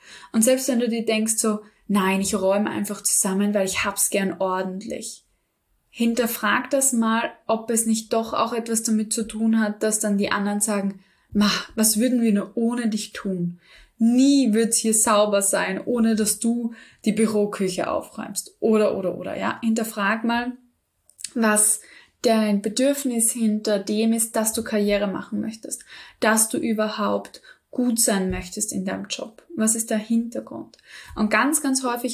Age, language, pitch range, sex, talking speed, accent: 10-29, German, 205-235 Hz, female, 165 wpm, German